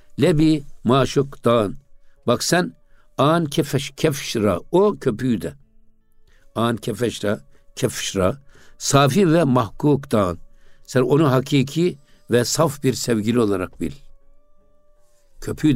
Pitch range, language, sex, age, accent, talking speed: 100-140 Hz, Turkish, male, 60-79, native, 105 wpm